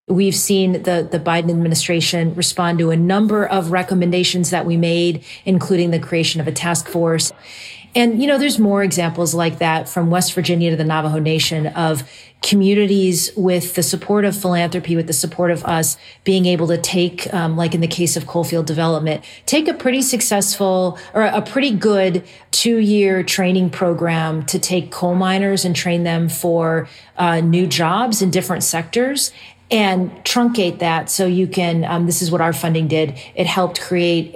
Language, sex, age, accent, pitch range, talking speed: English, female, 40-59, American, 170-205 Hz, 180 wpm